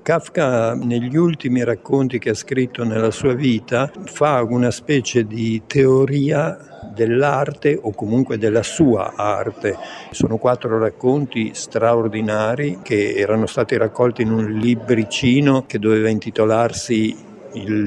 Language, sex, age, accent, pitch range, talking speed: Italian, male, 60-79, native, 110-140 Hz, 120 wpm